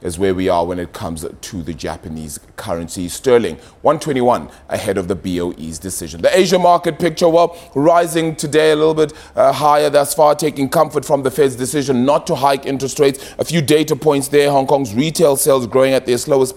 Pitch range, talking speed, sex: 115-145 Hz, 205 wpm, male